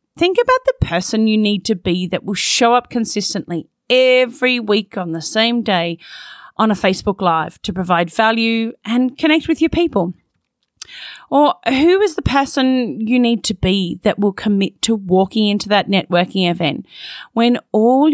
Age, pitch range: 30-49, 195-260 Hz